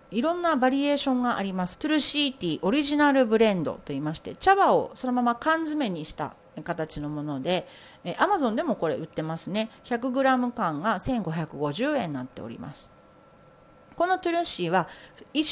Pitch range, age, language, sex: 180-285 Hz, 40-59, Japanese, female